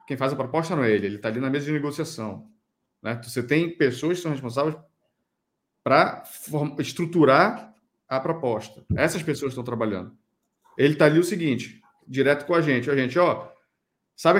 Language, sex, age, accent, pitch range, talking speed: Portuguese, male, 40-59, Brazilian, 130-180 Hz, 175 wpm